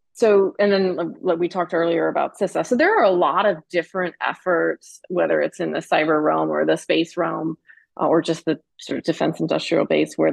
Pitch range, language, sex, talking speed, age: 165-215 Hz, English, female, 210 wpm, 30-49